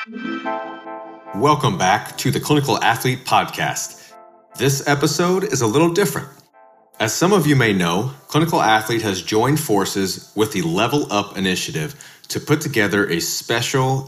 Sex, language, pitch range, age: male, English, 105-145 Hz, 30-49